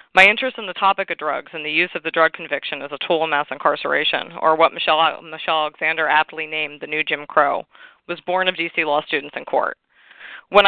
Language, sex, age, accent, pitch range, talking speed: English, female, 20-39, American, 155-180 Hz, 225 wpm